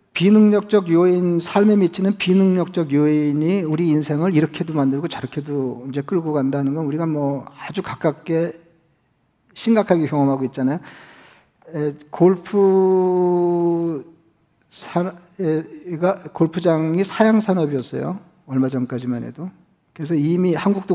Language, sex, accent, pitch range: Korean, male, native, 150-185 Hz